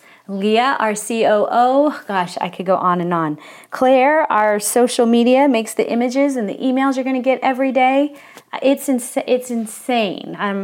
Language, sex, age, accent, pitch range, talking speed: English, female, 30-49, American, 210-265 Hz, 170 wpm